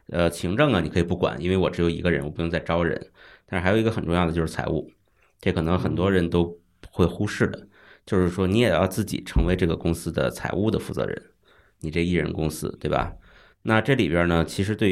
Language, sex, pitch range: Chinese, male, 85-100 Hz